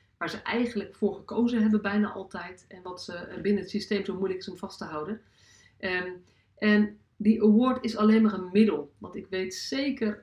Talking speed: 205 wpm